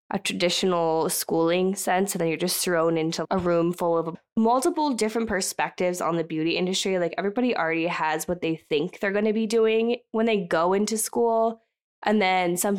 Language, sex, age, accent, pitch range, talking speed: English, female, 20-39, American, 180-220 Hz, 190 wpm